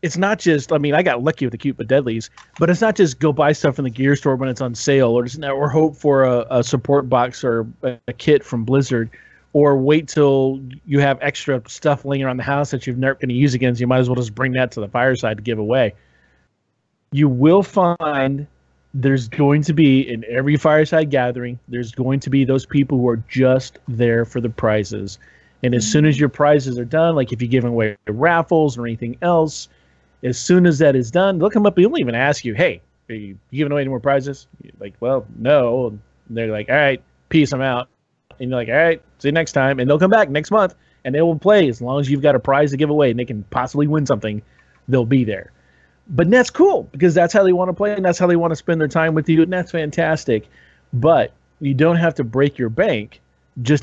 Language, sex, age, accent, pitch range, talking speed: English, male, 40-59, American, 120-155 Hz, 245 wpm